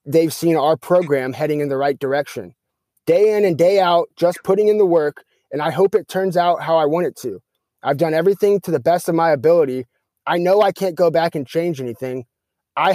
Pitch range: 155-200 Hz